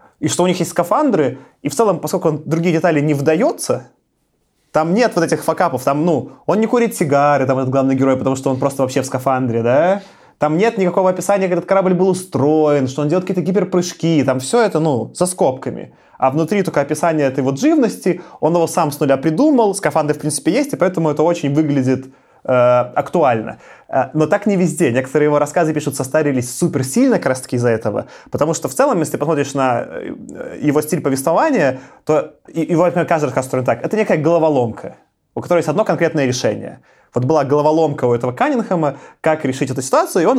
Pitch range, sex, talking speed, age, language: 140-175 Hz, male, 195 wpm, 20-39, Russian